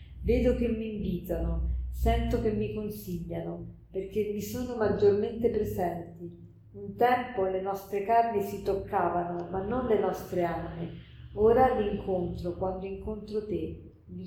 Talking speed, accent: 135 wpm, native